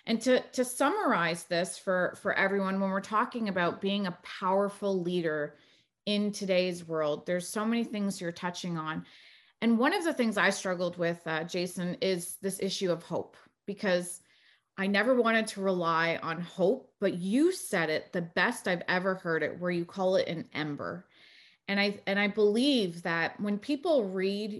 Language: English